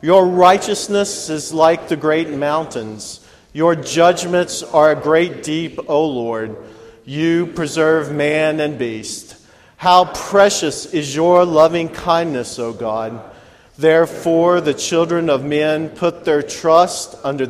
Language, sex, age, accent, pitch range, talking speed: English, male, 40-59, American, 130-170 Hz, 125 wpm